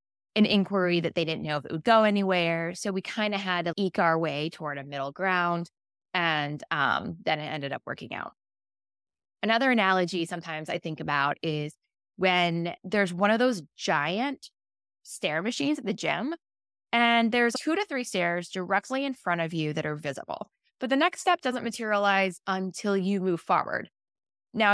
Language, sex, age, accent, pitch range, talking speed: English, female, 20-39, American, 160-220 Hz, 180 wpm